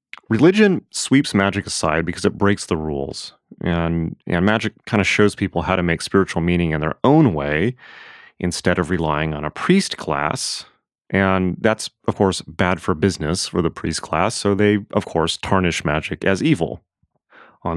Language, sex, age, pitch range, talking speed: English, male, 30-49, 85-100 Hz, 175 wpm